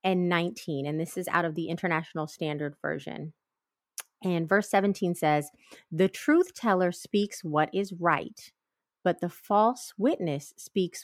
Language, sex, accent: English, female, American